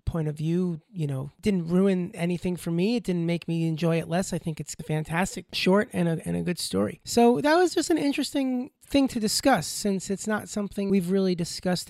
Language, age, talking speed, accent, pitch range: English, 30-49, 225 wpm, American, 170-205 Hz